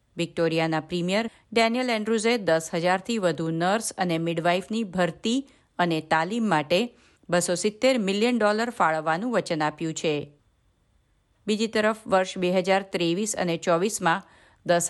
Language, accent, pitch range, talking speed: Gujarati, native, 170-220 Hz, 85 wpm